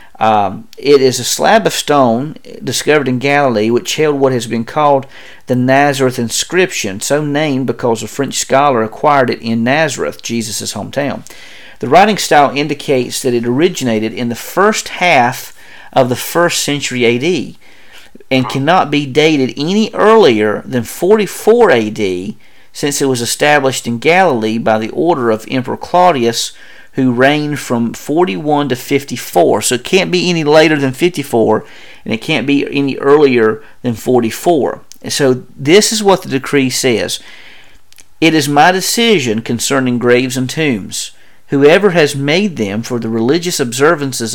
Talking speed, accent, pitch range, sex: 155 wpm, American, 120-150 Hz, male